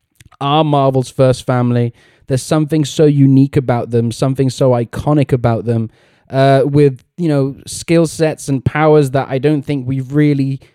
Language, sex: English, male